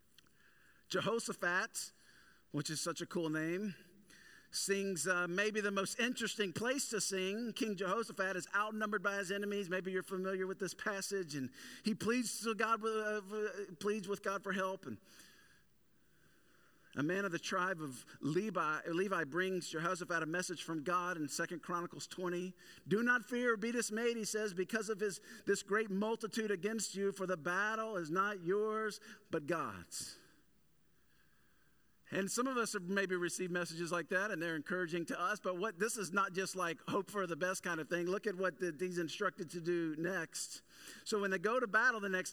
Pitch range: 180-215 Hz